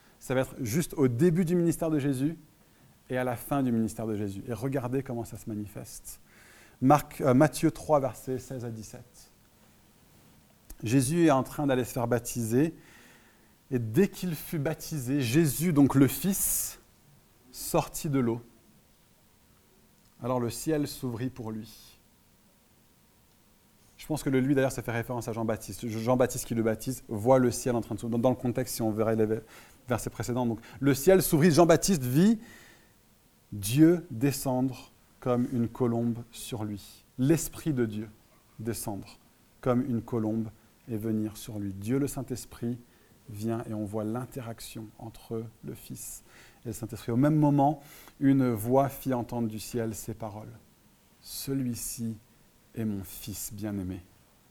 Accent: French